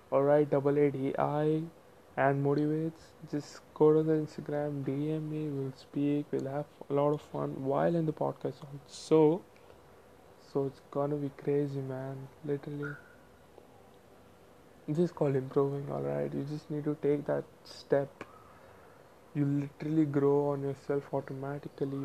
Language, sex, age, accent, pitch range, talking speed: Hindi, male, 20-39, native, 135-150 Hz, 145 wpm